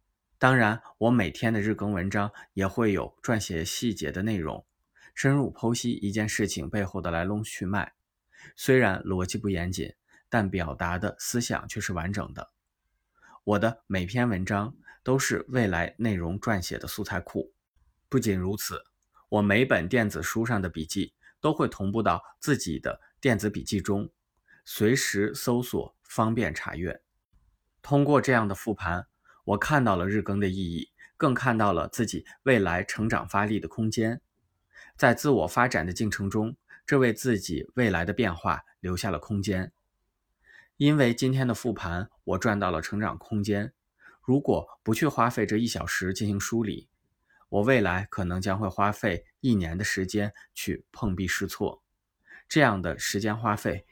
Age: 20-39